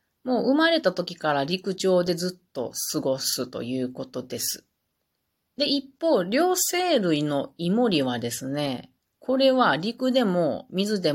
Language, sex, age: Japanese, female, 40-59